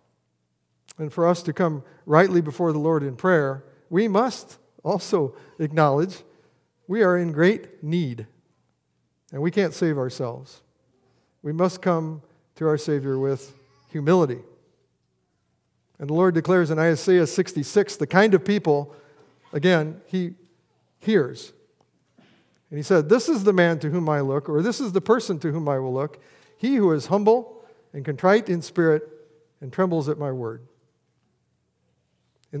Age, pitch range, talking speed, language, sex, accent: 50-69, 140-180 Hz, 150 wpm, English, male, American